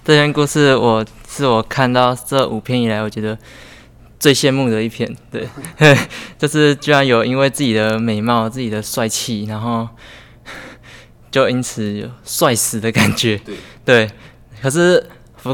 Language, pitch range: Chinese, 115-130 Hz